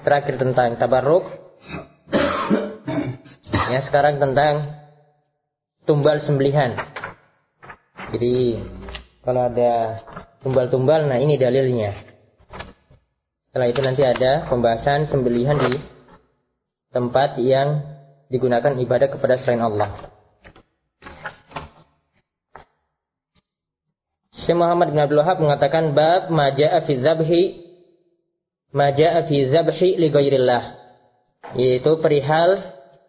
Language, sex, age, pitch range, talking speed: Malay, male, 20-39, 135-160 Hz, 80 wpm